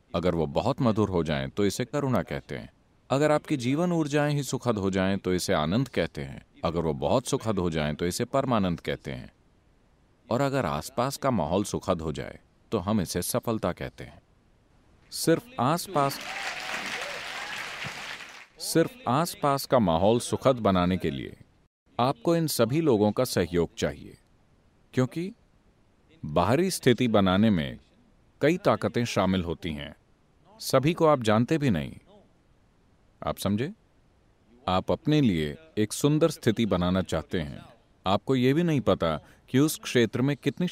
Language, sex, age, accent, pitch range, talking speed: English, male, 40-59, Indian, 90-140 Hz, 150 wpm